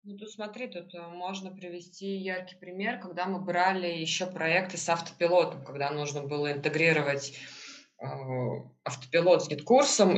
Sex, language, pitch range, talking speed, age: female, Russian, 170-205 Hz, 135 wpm, 20-39